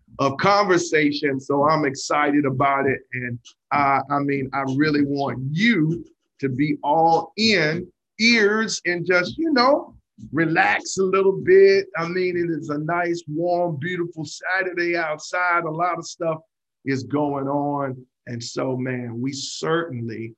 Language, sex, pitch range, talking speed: English, male, 130-165 Hz, 145 wpm